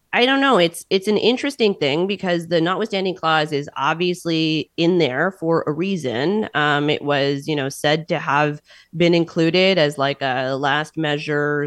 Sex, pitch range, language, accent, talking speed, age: female, 150-190 Hz, English, American, 175 wpm, 30-49